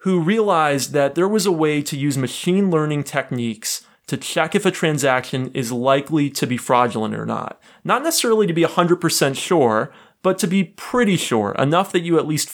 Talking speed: 190 wpm